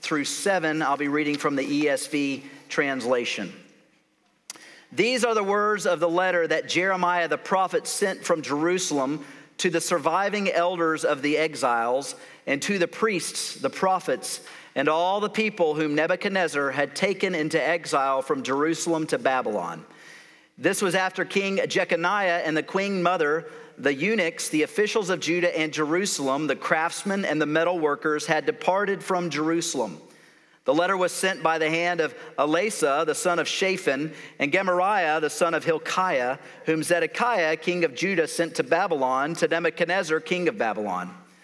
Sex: male